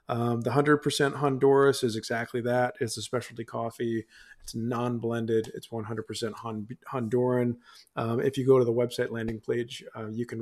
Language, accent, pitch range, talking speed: English, American, 115-135 Hz, 160 wpm